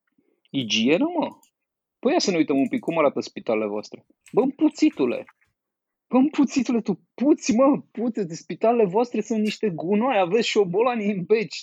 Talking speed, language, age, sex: 160 wpm, Romanian, 30-49, male